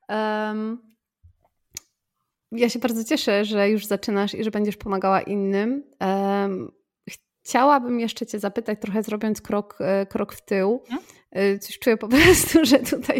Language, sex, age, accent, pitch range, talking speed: Polish, female, 20-39, native, 185-230 Hz, 125 wpm